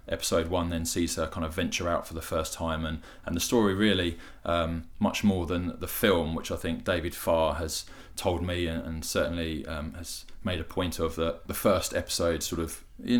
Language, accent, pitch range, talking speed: English, British, 80-85 Hz, 220 wpm